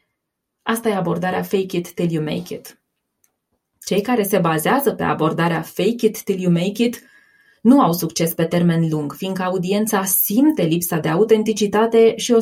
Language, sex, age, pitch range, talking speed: Romanian, female, 20-39, 175-235 Hz, 170 wpm